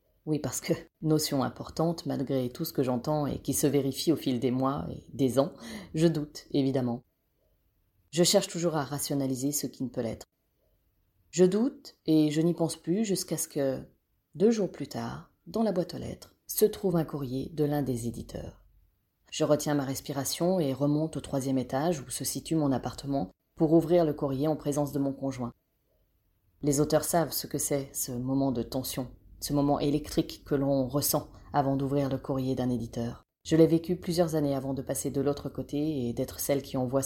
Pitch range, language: 130-155 Hz, French